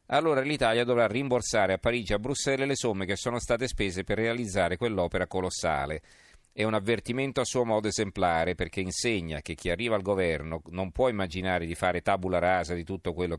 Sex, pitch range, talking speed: male, 90-110 Hz, 195 wpm